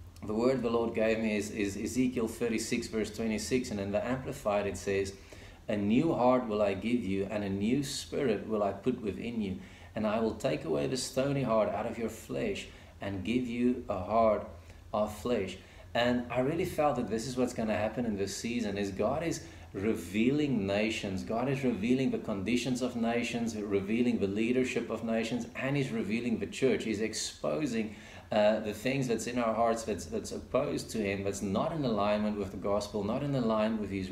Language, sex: English, male